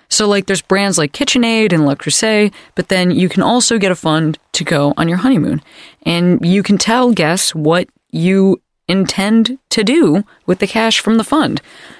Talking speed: 190 wpm